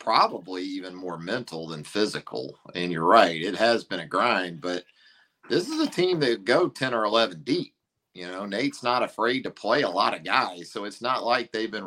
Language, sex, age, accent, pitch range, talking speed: English, male, 50-69, American, 90-120 Hz, 210 wpm